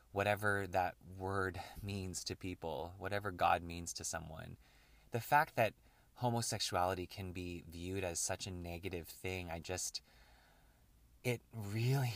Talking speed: 135 wpm